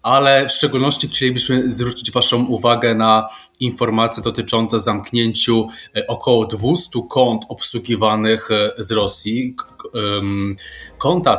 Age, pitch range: 20-39, 105-125 Hz